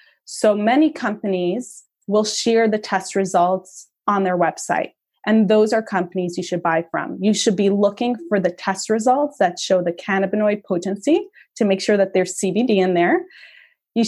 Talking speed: 175 wpm